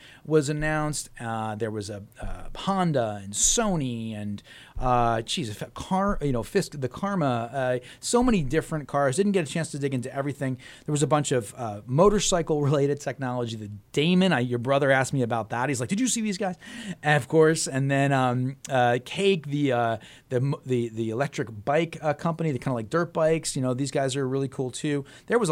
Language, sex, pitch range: English, male, 120-155 Hz